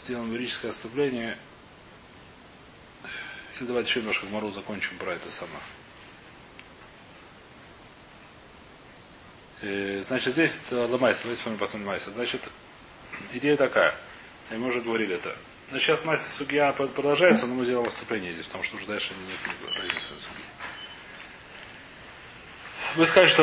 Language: Russian